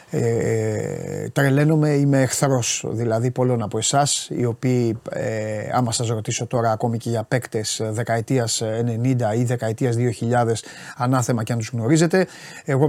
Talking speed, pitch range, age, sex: 130 wpm, 120-145 Hz, 30-49, male